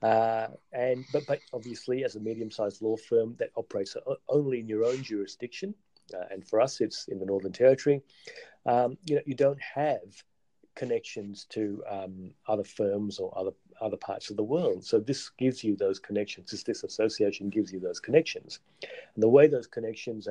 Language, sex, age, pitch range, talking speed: English, male, 40-59, 100-130 Hz, 180 wpm